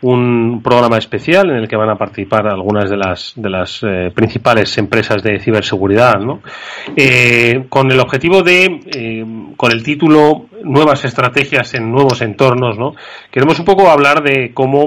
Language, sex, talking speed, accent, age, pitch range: Spanish, male, 165 wpm, Spanish, 30-49, 115-140 Hz